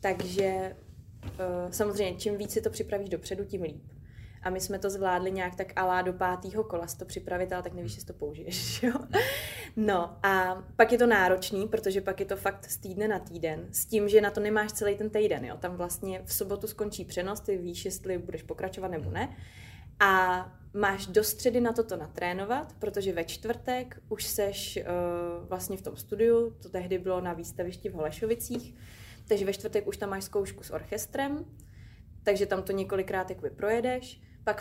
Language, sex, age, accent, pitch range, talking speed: Czech, female, 20-39, native, 175-205 Hz, 190 wpm